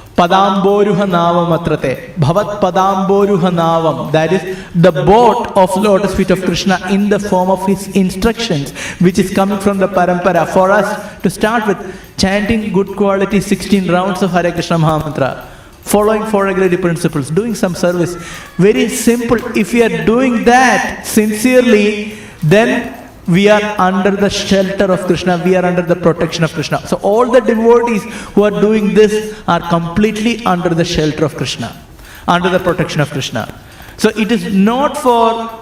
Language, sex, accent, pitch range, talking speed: English, male, Indian, 170-210 Hz, 155 wpm